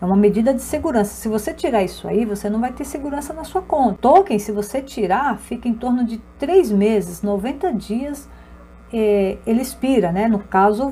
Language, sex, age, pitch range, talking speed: Portuguese, female, 50-69, 200-260 Hz, 200 wpm